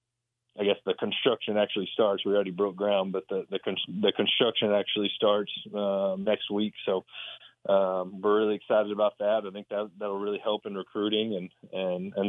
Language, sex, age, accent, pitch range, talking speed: English, male, 30-49, American, 95-105 Hz, 185 wpm